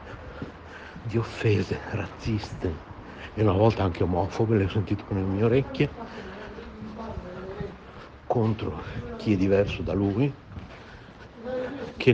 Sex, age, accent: male, 60-79, native